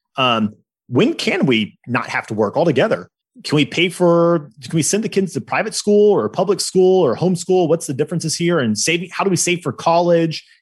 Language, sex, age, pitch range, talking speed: English, male, 30-49, 130-185 Hz, 220 wpm